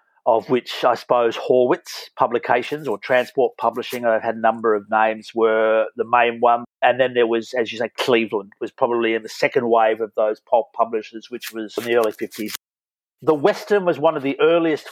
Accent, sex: Australian, male